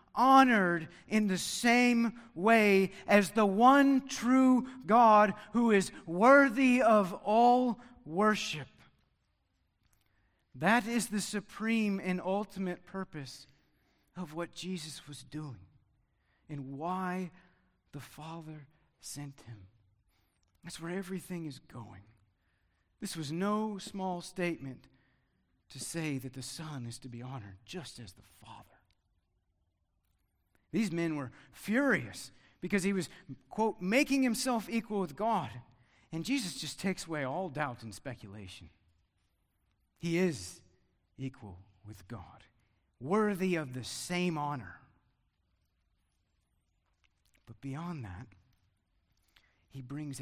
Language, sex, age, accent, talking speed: English, male, 50-69, American, 110 wpm